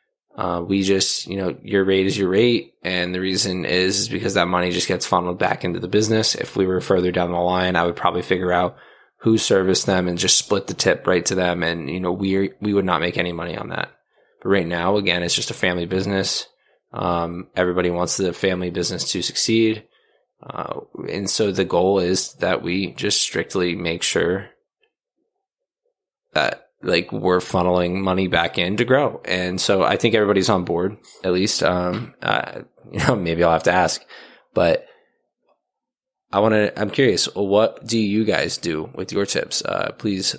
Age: 20-39